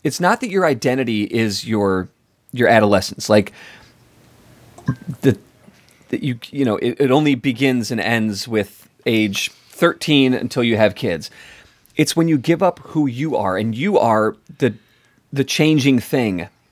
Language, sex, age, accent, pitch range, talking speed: English, male, 30-49, American, 110-145 Hz, 155 wpm